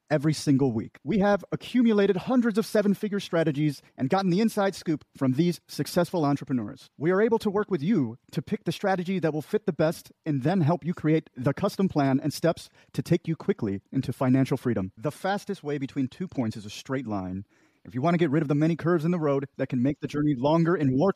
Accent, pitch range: American, 145-195 Hz